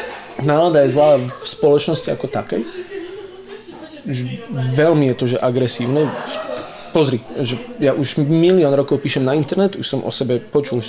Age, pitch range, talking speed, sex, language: 20-39, 115-135 Hz, 145 wpm, male, Slovak